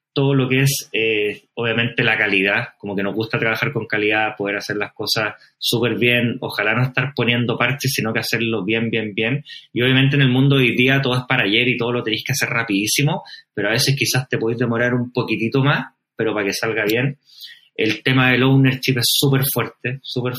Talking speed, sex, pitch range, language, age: 215 wpm, male, 115-140 Hz, Spanish, 30-49